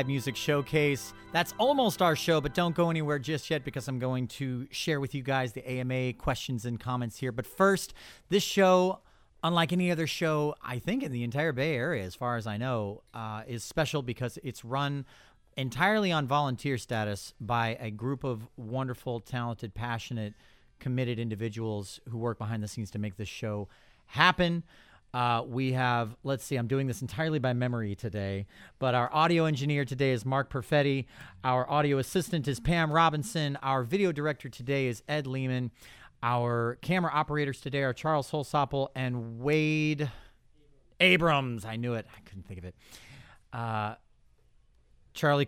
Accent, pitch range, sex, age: American, 120-150 Hz, male, 40-59